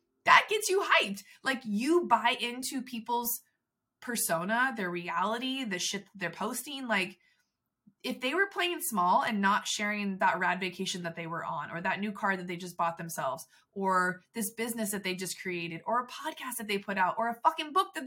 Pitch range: 200-320 Hz